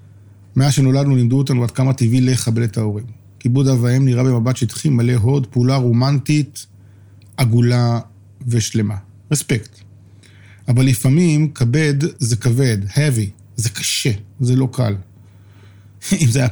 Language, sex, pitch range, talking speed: Hebrew, male, 105-130 Hz, 135 wpm